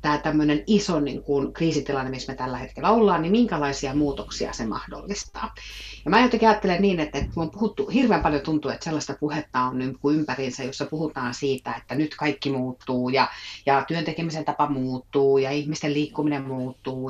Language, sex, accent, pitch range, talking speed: Finnish, female, native, 130-160 Hz, 170 wpm